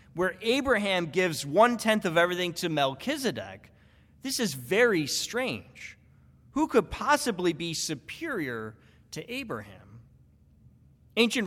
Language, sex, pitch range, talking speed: English, male, 140-210 Hz, 105 wpm